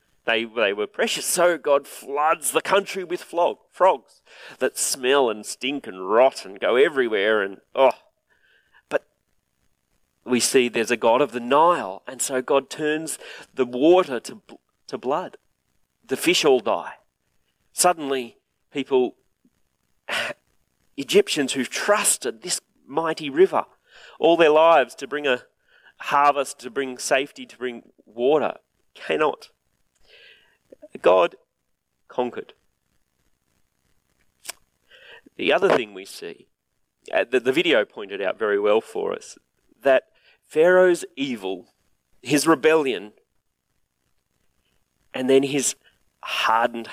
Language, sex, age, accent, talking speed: English, male, 40-59, Australian, 120 wpm